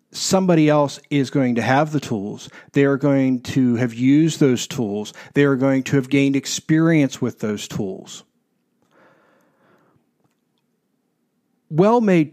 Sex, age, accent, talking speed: male, 50-69, American, 130 wpm